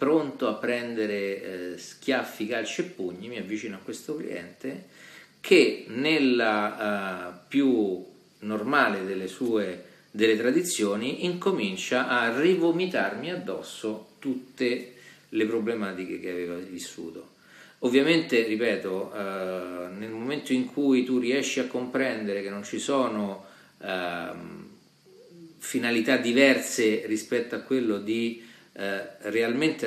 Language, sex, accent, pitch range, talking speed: Italian, male, native, 100-125 Hz, 110 wpm